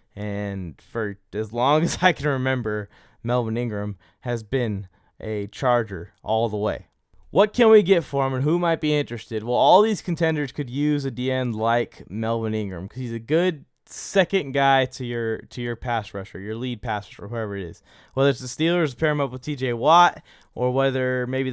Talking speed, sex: 200 wpm, male